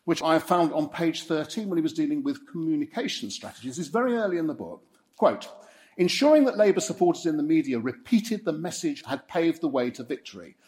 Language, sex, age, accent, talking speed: English, male, 50-69, British, 210 wpm